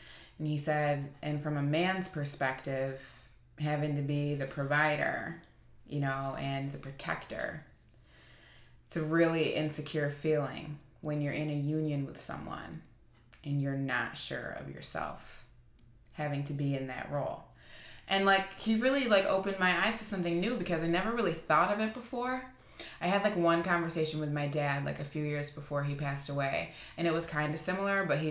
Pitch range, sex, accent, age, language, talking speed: 145-175 Hz, female, American, 20-39, English, 180 wpm